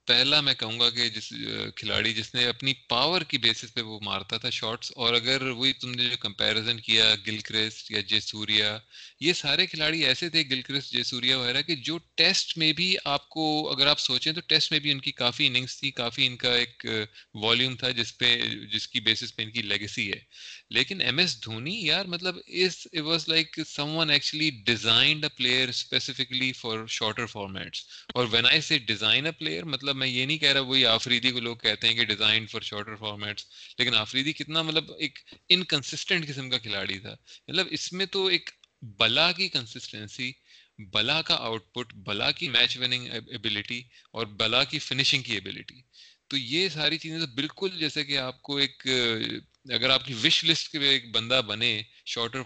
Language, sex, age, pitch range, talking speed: Urdu, male, 30-49, 110-150 Hz, 160 wpm